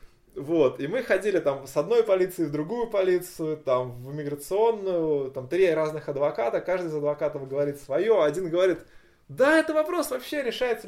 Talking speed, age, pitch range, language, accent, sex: 165 wpm, 20-39, 155-255 Hz, Russian, native, male